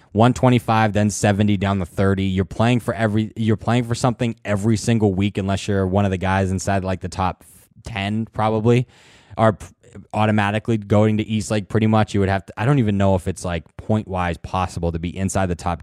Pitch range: 95-115 Hz